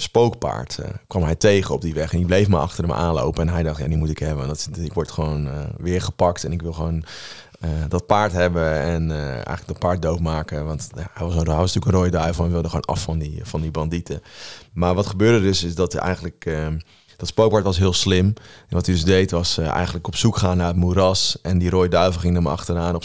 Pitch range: 80-90 Hz